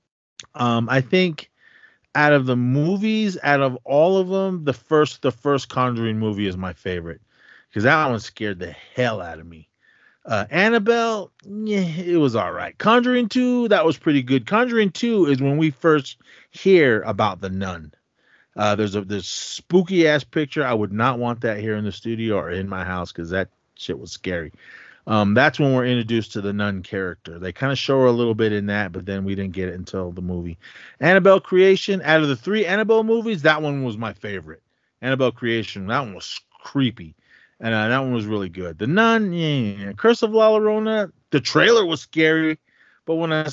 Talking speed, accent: 200 wpm, American